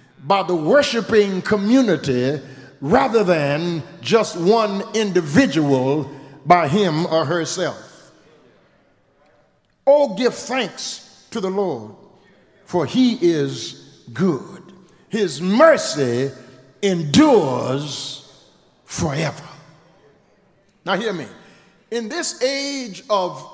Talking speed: 85 wpm